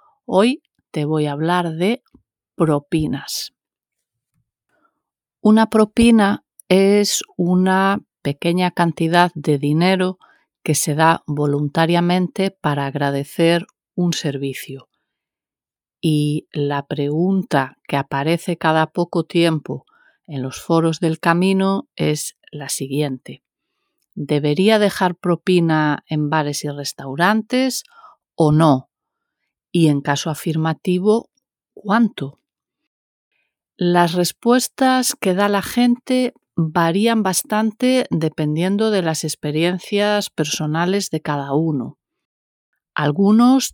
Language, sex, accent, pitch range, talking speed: Spanish, female, Spanish, 150-205 Hz, 95 wpm